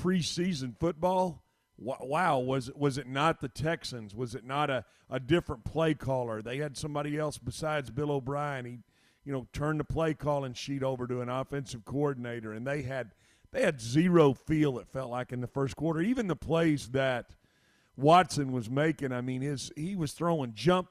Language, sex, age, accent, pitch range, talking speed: English, male, 50-69, American, 125-155 Hz, 190 wpm